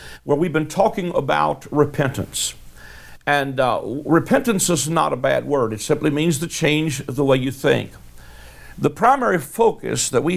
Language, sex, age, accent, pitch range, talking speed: English, male, 60-79, American, 130-160 Hz, 160 wpm